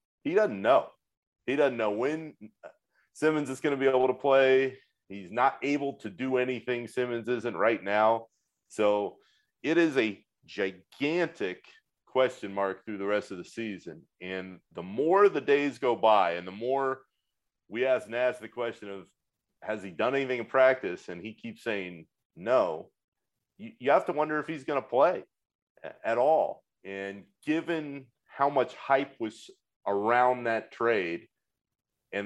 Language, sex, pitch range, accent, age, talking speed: English, male, 105-140 Hz, American, 30-49, 160 wpm